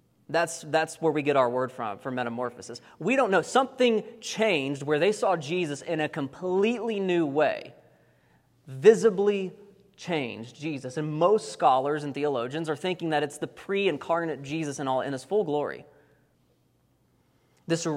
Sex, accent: male, American